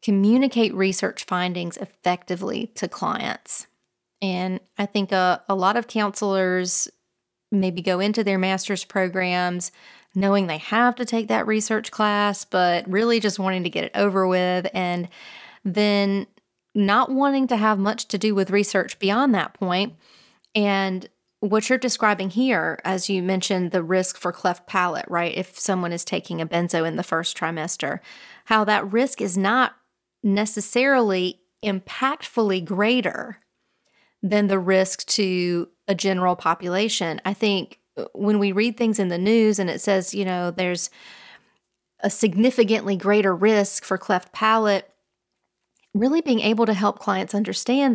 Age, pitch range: 30-49, 185-220 Hz